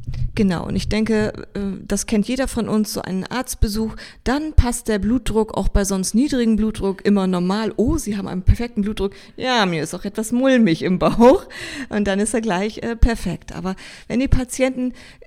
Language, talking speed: German, 190 wpm